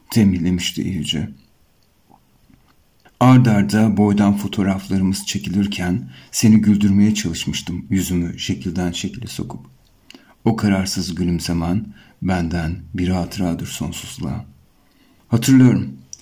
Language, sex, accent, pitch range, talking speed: Turkish, male, native, 90-110 Hz, 80 wpm